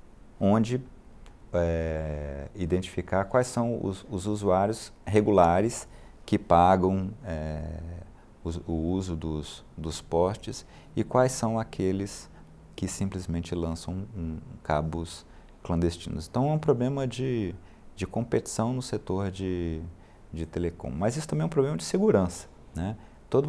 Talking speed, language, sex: 120 wpm, Portuguese, male